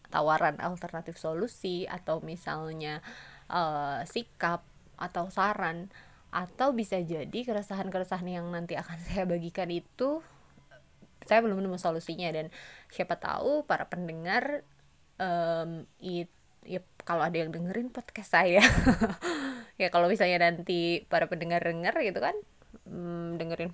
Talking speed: 120 wpm